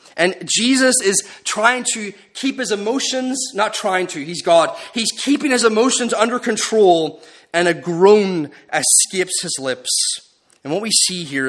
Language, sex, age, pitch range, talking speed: English, male, 30-49, 145-220 Hz, 155 wpm